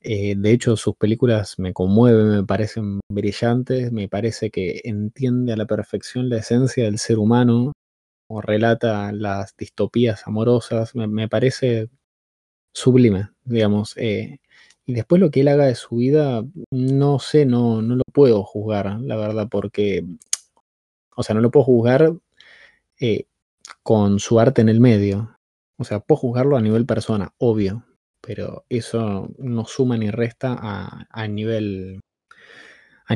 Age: 20-39